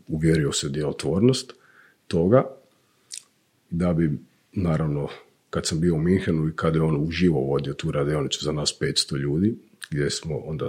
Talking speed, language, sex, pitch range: 150 wpm, Croatian, male, 80-100 Hz